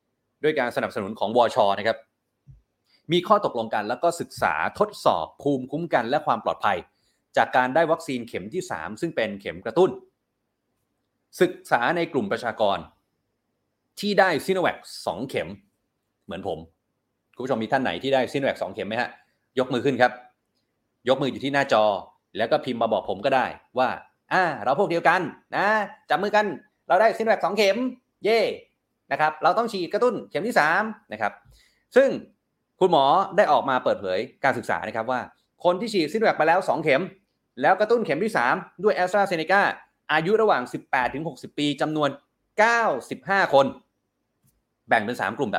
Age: 30-49